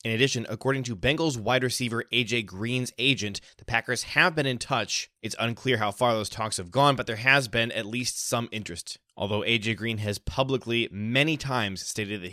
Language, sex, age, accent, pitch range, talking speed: English, male, 20-39, American, 105-125 Hz, 200 wpm